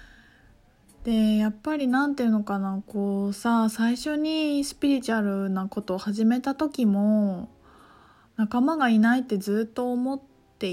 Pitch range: 200-275 Hz